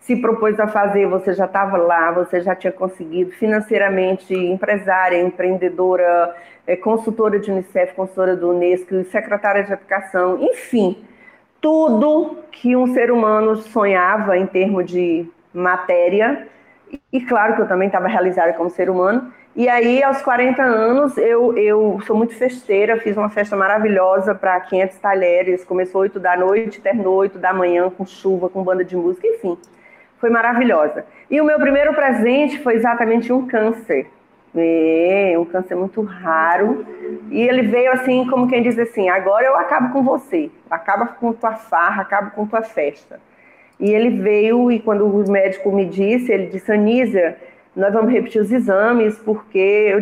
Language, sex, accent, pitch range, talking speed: Portuguese, female, Brazilian, 185-235 Hz, 160 wpm